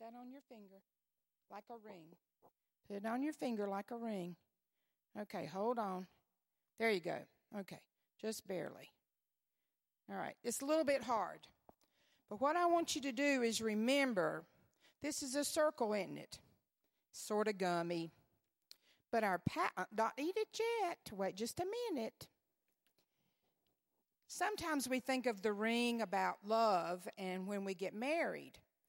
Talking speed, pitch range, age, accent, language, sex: 150 wpm, 200-275 Hz, 50-69, American, English, female